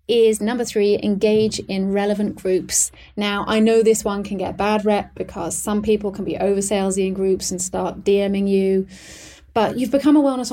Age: 30-49